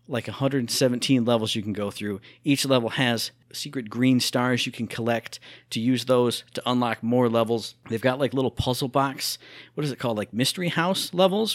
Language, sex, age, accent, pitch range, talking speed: English, male, 40-59, American, 115-140 Hz, 190 wpm